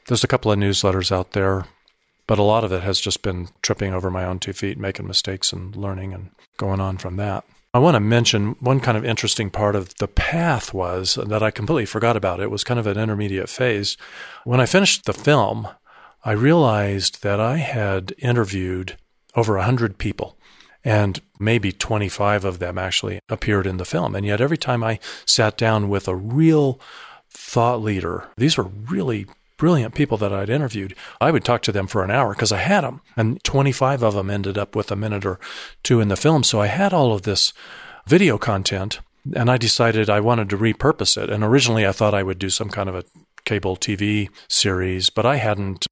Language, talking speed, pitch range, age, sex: English, 205 wpm, 95-115 Hz, 40-59, male